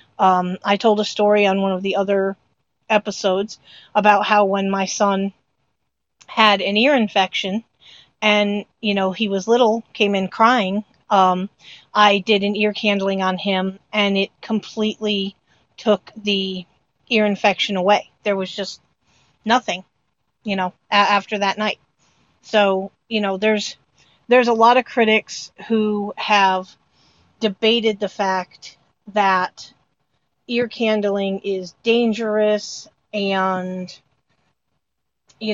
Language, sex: English, female